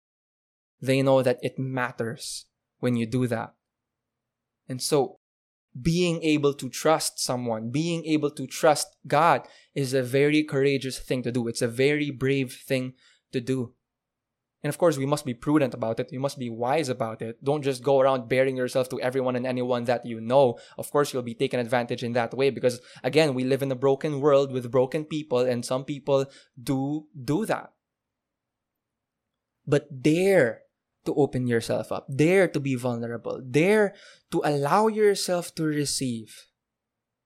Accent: Filipino